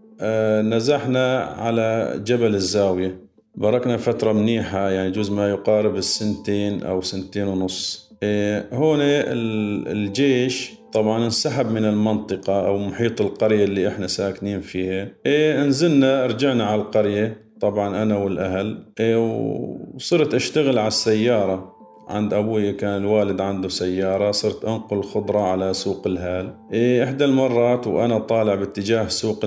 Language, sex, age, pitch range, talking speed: Arabic, male, 40-59, 95-115 Hz, 120 wpm